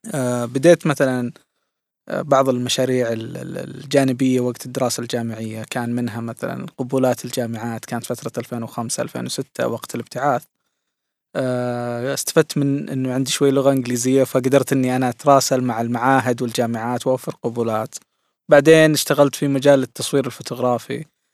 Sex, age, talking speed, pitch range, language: male, 20-39, 125 wpm, 125-150 Hz, Arabic